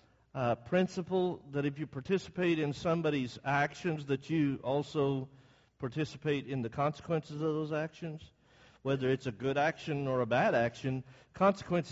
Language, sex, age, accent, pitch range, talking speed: English, male, 50-69, American, 135-180 Hz, 145 wpm